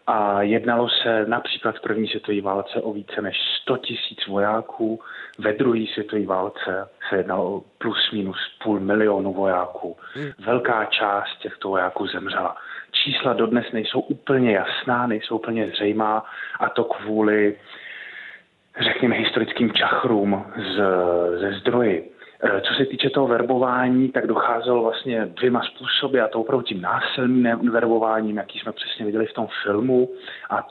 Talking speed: 140 wpm